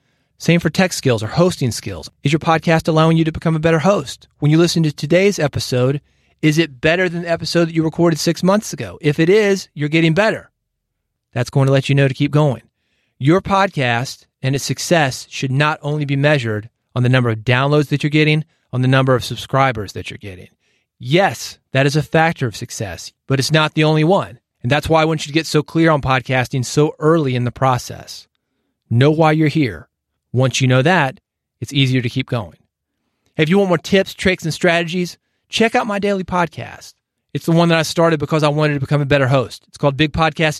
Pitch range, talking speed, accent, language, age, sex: 130-165 Hz, 220 wpm, American, English, 30-49, male